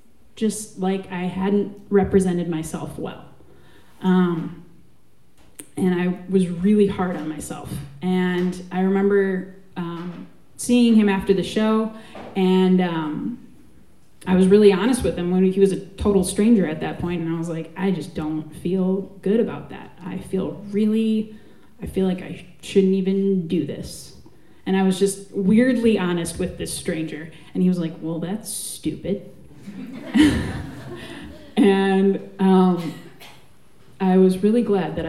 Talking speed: 145 wpm